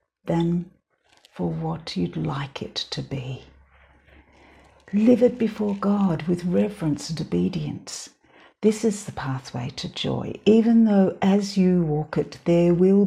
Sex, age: female, 60-79